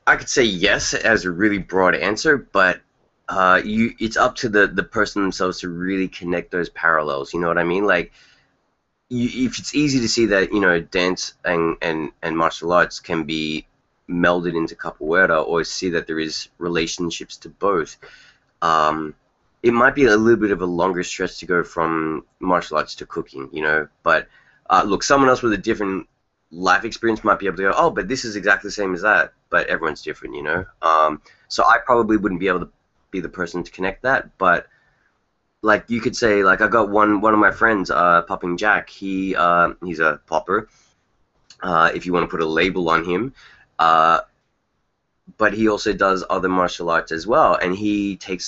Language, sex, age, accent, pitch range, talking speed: English, male, 20-39, Australian, 85-105 Hz, 200 wpm